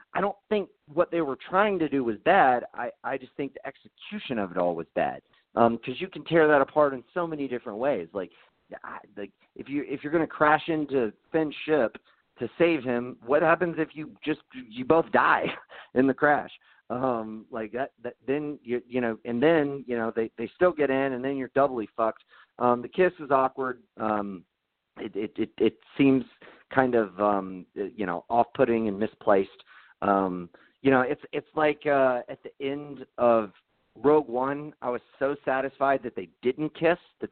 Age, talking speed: 40-59, 200 wpm